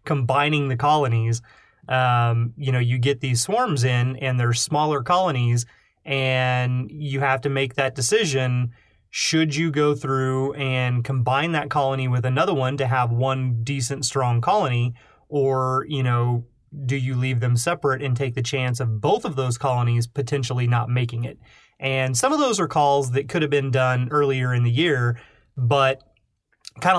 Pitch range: 120-140 Hz